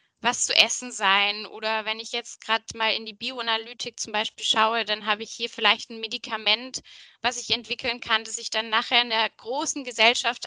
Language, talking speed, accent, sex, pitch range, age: English, 200 wpm, German, female, 220-250 Hz, 10-29